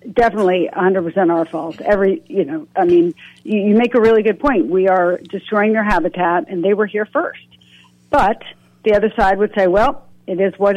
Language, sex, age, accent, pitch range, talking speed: English, female, 50-69, American, 180-225 Hz, 205 wpm